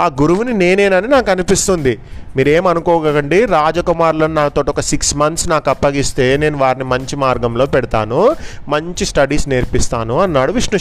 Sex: male